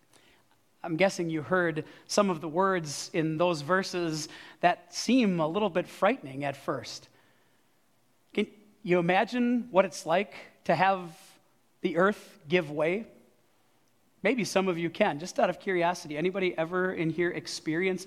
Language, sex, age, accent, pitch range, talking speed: English, male, 40-59, American, 170-220 Hz, 150 wpm